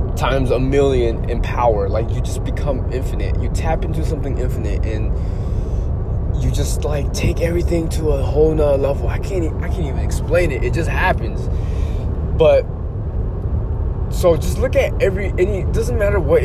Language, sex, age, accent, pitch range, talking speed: English, male, 20-39, American, 75-100 Hz, 170 wpm